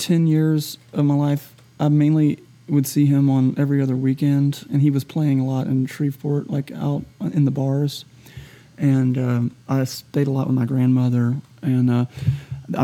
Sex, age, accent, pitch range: male, 30-49, American, 125-140 Hz